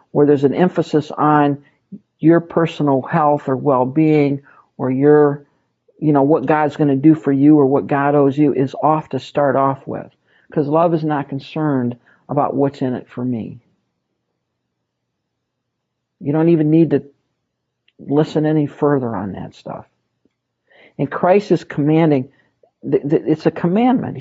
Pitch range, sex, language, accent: 140-175 Hz, male, English, American